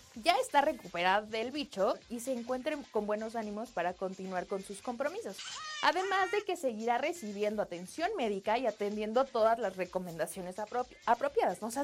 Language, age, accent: Spanish, 20-39, Mexican